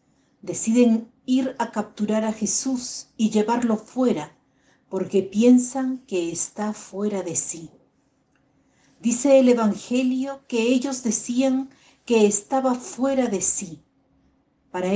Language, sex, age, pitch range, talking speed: Spanish, female, 50-69, 195-260 Hz, 110 wpm